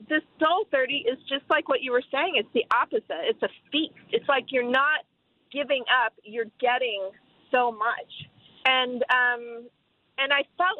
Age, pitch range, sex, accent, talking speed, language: 40-59, 240-310 Hz, female, American, 170 wpm, English